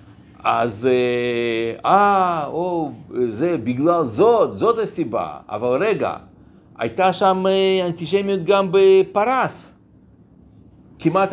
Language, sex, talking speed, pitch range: Hebrew, male, 85 wpm, 130-180 Hz